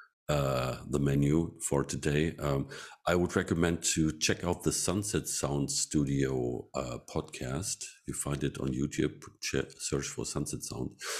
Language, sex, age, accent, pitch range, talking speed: English, male, 50-69, German, 70-80 Hz, 145 wpm